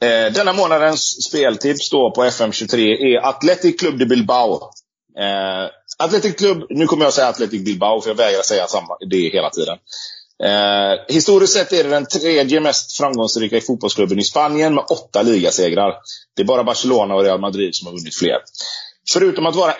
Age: 30-49